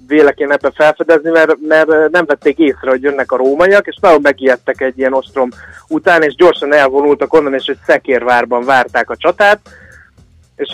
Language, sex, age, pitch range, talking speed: Hungarian, male, 30-49, 130-165 Hz, 170 wpm